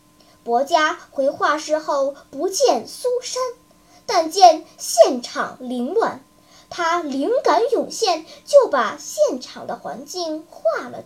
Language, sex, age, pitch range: Chinese, male, 10-29, 280-365 Hz